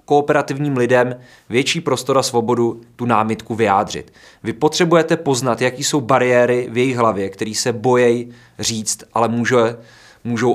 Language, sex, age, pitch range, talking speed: Czech, male, 20-39, 115-150 Hz, 135 wpm